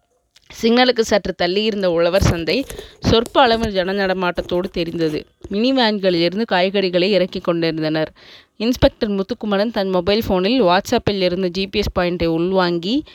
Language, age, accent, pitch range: Tamil, 20-39, native, 180-215 Hz